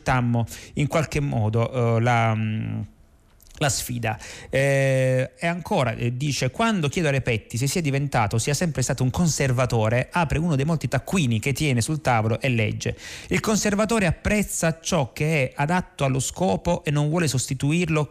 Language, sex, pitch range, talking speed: Italian, male, 120-155 Hz, 165 wpm